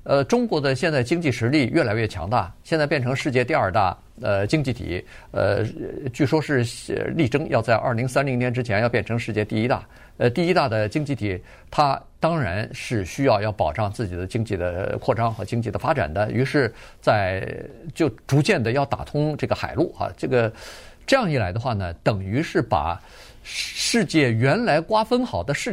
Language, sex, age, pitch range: Chinese, male, 50-69, 110-160 Hz